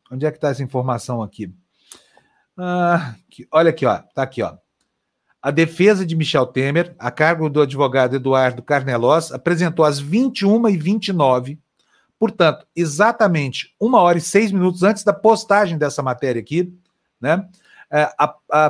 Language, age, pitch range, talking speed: Portuguese, 40-59, 150-195 Hz, 140 wpm